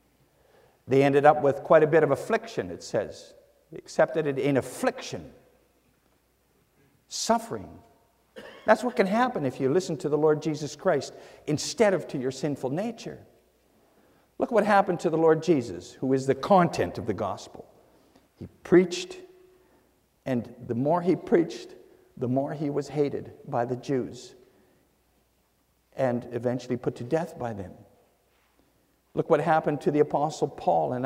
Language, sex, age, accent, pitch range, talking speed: English, male, 60-79, American, 135-195 Hz, 155 wpm